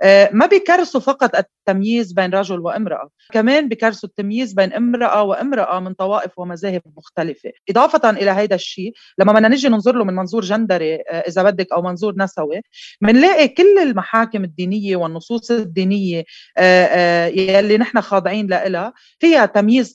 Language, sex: Arabic, female